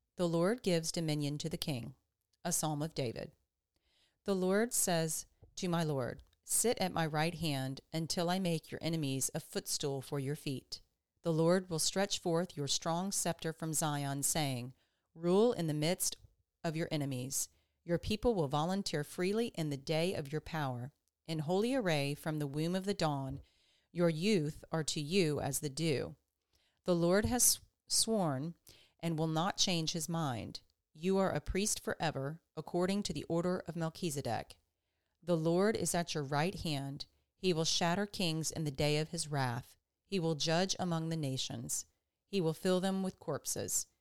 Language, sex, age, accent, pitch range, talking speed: English, female, 40-59, American, 140-175 Hz, 175 wpm